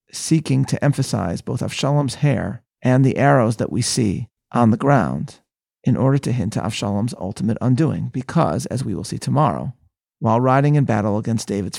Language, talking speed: English, 180 wpm